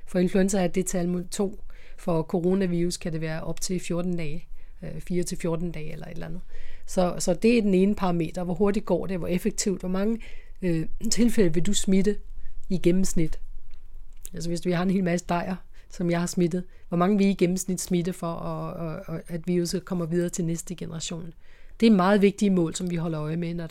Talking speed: 215 wpm